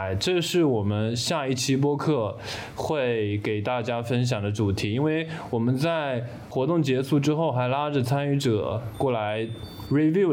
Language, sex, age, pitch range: Chinese, male, 20-39, 110-135 Hz